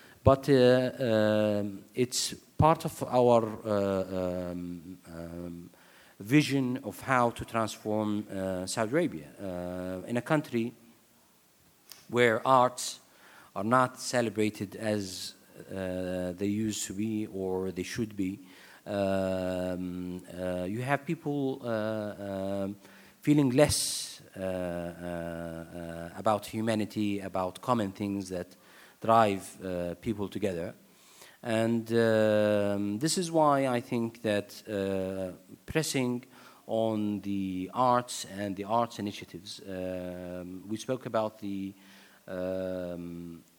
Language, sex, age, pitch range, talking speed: English, male, 40-59, 95-120 Hz, 115 wpm